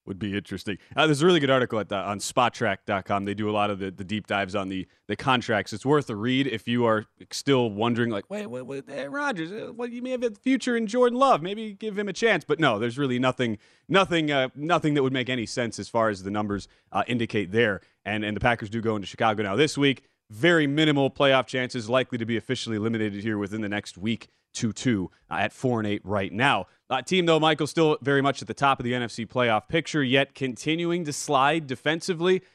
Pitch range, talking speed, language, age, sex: 115-150 Hz, 240 wpm, English, 30-49, male